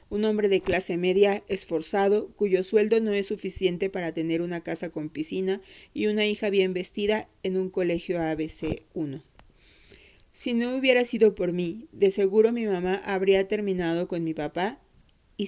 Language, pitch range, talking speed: Spanish, 175-210 Hz, 165 wpm